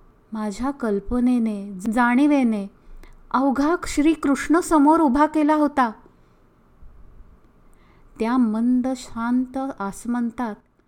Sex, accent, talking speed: female, native, 65 wpm